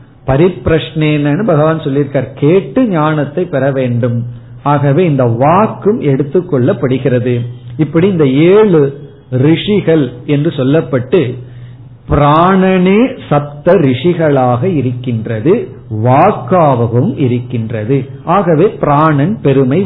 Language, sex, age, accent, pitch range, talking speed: Tamil, male, 50-69, native, 125-165 Hz, 80 wpm